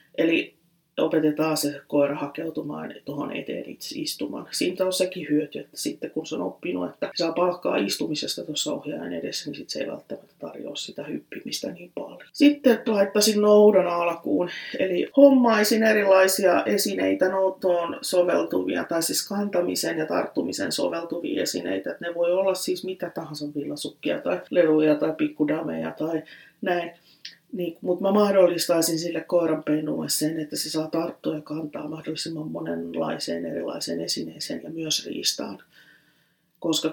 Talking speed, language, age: 140 wpm, Finnish, 30-49